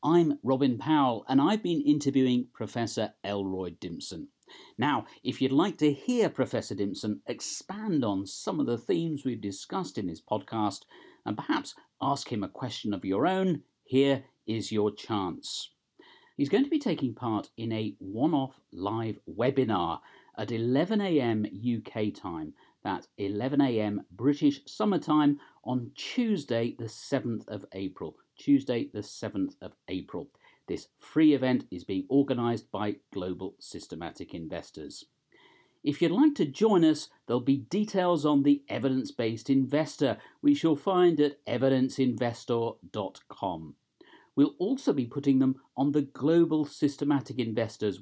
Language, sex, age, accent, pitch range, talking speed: English, male, 50-69, British, 115-150 Hz, 140 wpm